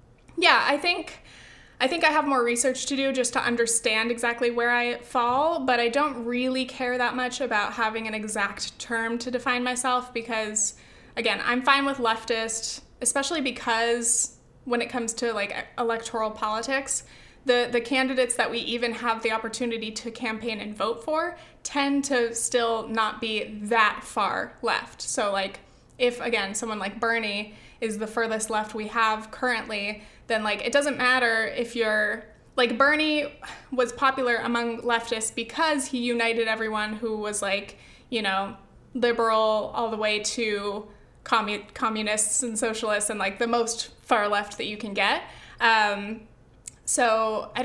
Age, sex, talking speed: 20-39, female, 160 wpm